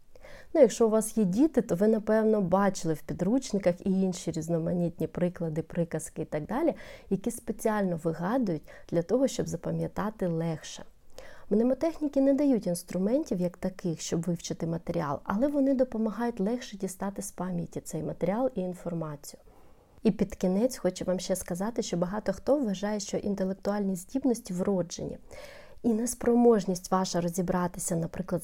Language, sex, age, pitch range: Ukrainian, female, 30-49, 180-225 Hz